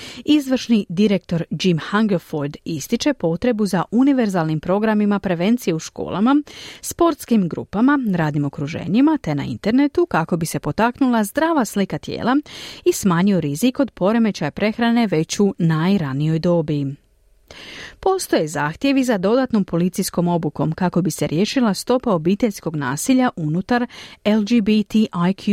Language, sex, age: Croatian, female, 40-59